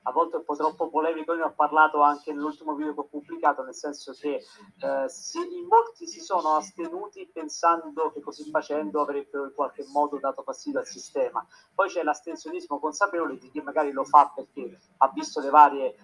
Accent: native